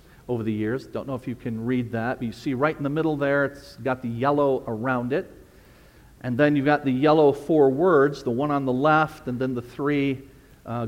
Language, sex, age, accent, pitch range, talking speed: English, male, 50-69, American, 125-160 Hz, 230 wpm